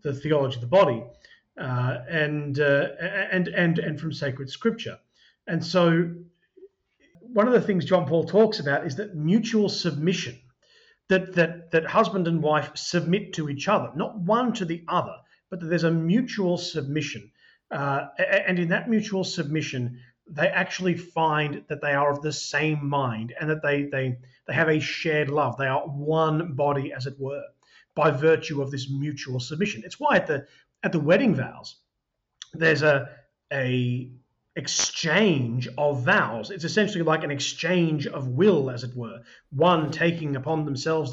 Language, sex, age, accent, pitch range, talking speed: English, male, 40-59, Australian, 140-185 Hz, 170 wpm